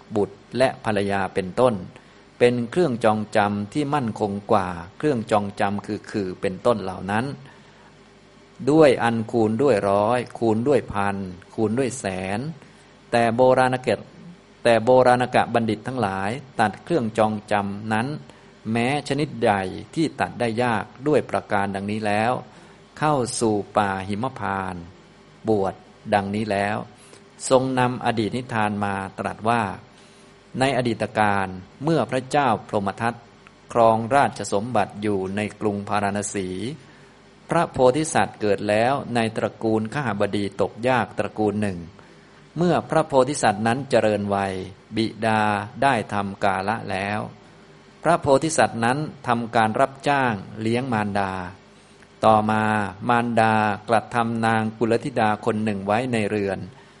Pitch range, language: 100-125 Hz, Thai